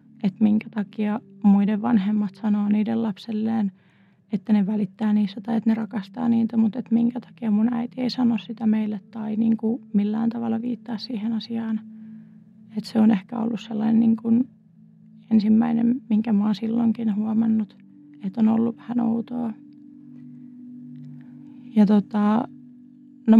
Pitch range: 210-230 Hz